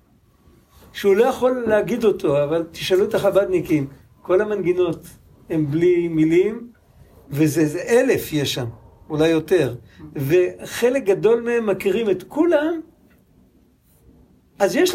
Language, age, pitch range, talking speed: Hebrew, 50-69, 160-235 Hz, 110 wpm